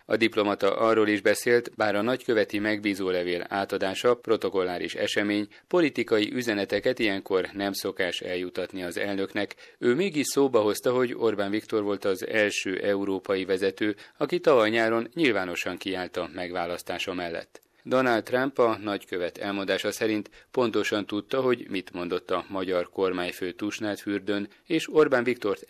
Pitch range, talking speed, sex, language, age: 95-115 Hz, 130 wpm, male, Hungarian, 30-49